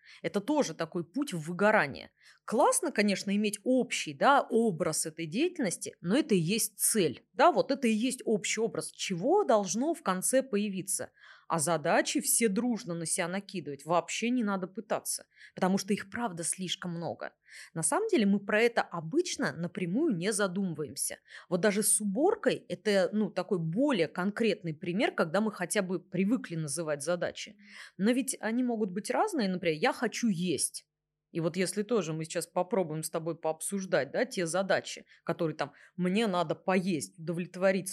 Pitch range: 170-220 Hz